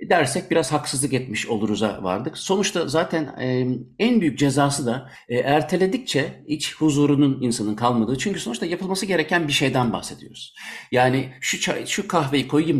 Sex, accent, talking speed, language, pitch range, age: male, native, 150 wpm, Turkish, 120-165 Hz, 60-79